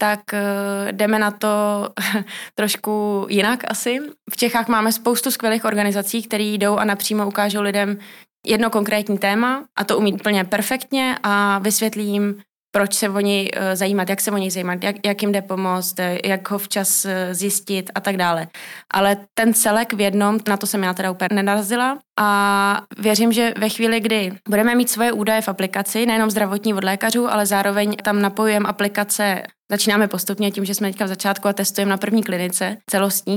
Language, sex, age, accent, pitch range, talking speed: Czech, female, 20-39, native, 195-215 Hz, 175 wpm